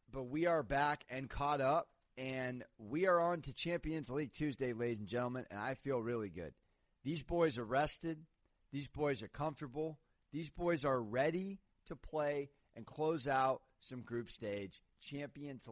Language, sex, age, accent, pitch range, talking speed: English, male, 30-49, American, 115-160 Hz, 170 wpm